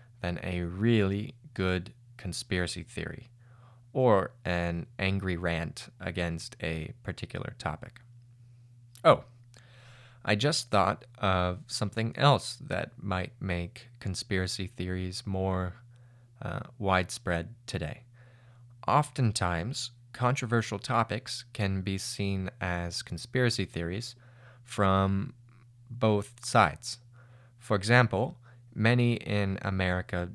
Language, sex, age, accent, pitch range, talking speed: English, male, 20-39, American, 90-120 Hz, 95 wpm